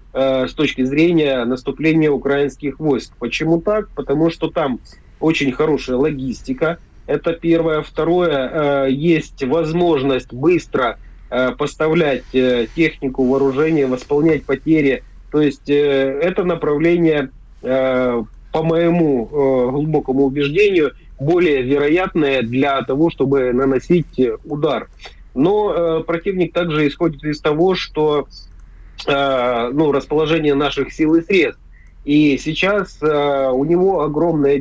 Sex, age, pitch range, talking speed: male, 30-49, 135-160 Hz, 100 wpm